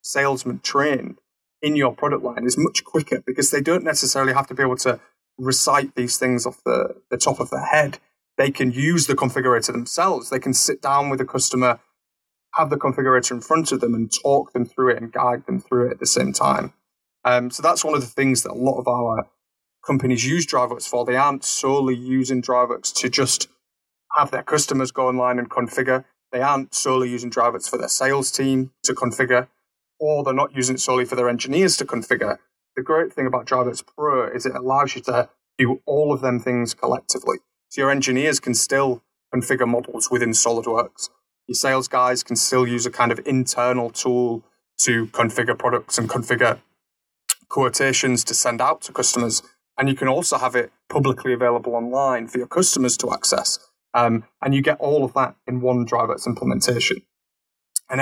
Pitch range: 125-135 Hz